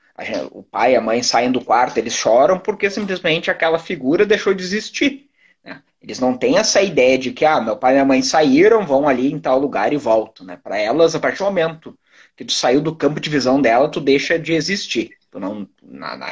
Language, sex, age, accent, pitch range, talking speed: Portuguese, male, 20-39, Brazilian, 130-185 Hz, 215 wpm